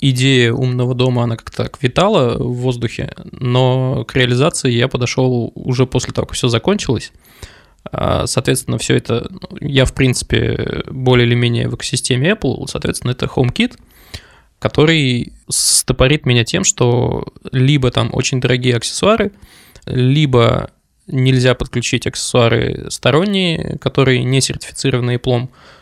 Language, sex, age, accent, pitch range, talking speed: Russian, male, 20-39, native, 120-135 Hz, 125 wpm